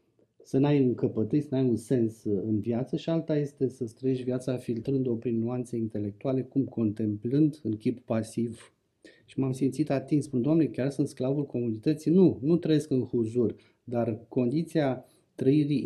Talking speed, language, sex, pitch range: 165 wpm, Romanian, male, 115-145 Hz